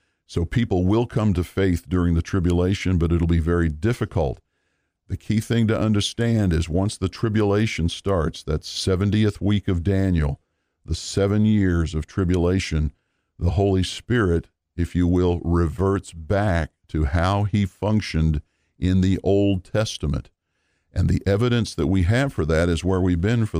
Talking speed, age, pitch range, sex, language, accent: 160 wpm, 50-69, 85-100 Hz, male, English, American